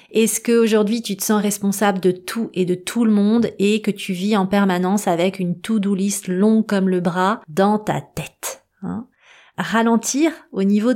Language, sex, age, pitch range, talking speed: French, female, 30-49, 185-220 Hz, 185 wpm